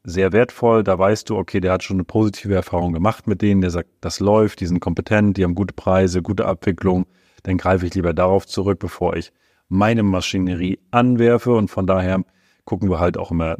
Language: German